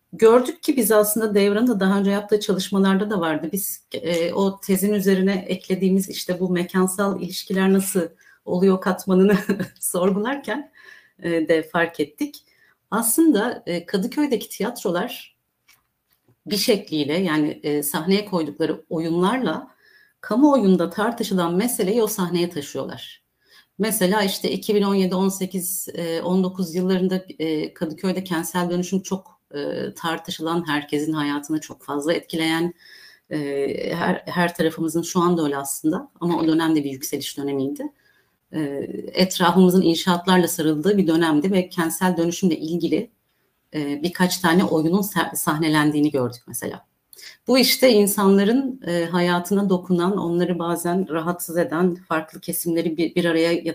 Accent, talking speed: native, 115 wpm